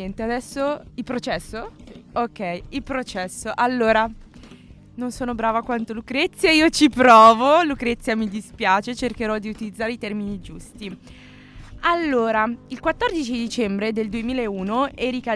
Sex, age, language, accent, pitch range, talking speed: female, 20-39, Italian, native, 200-250 Hz, 120 wpm